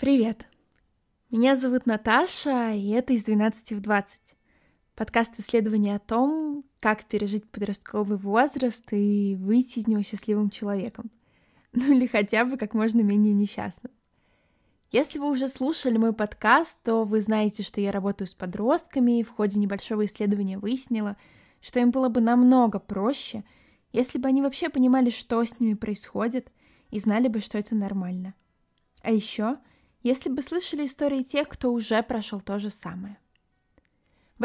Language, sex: Russian, female